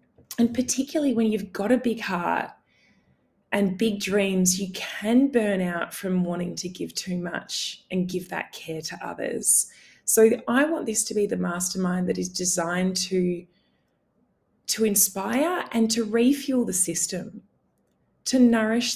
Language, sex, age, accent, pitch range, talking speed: English, female, 20-39, Australian, 175-215 Hz, 150 wpm